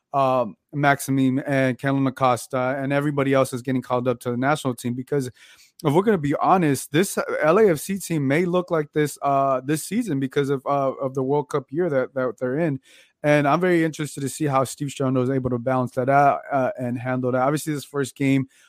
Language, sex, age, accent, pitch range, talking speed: English, male, 20-39, American, 130-145 Hz, 220 wpm